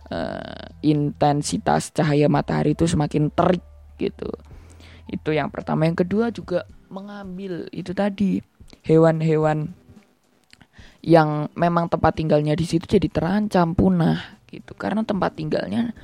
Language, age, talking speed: Indonesian, 20-39, 115 wpm